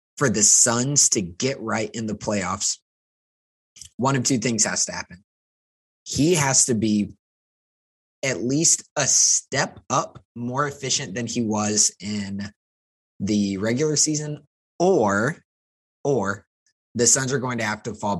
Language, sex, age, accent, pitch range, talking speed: English, male, 20-39, American, 100-130 Hz, 145 wpm